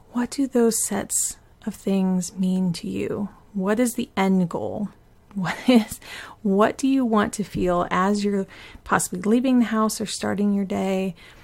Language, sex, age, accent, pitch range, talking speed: English, female, 30-49, American, 185-225 Hz, 170 wpm